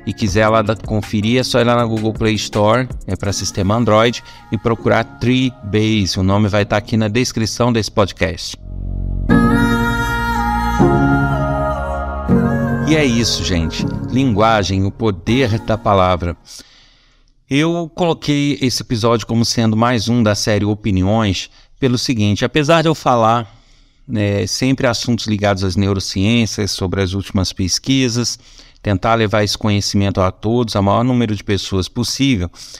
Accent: Brazilian